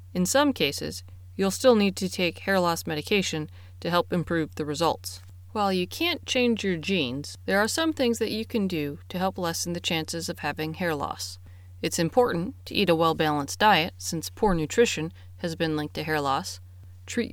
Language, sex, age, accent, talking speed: English, female, 30-49, American, 195 wpm